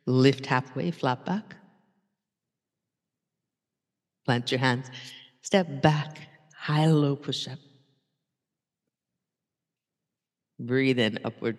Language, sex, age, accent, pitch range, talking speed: English, female, 50-69, American, 135-190 Hz, 70 wpm